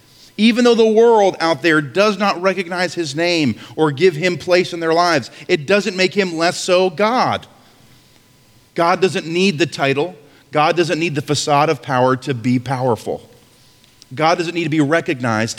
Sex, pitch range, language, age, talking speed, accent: male, 120-160 Hz, English, 40-59, 175 wpm, American